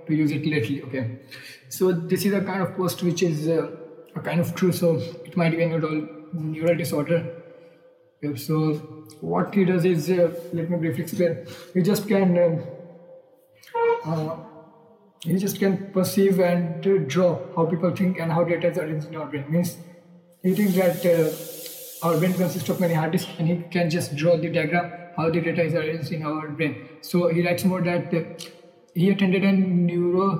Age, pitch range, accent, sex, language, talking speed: 20-39, 155-180 Hz, Indian, male, English, 190 wpm